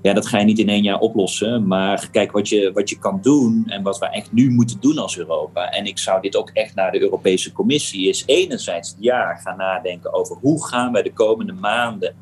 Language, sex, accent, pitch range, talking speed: Dutch, male, Dutch, 100-135 Hz, 235 wpm